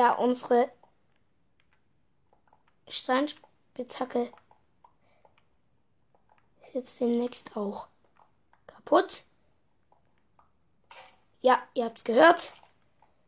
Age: 20-39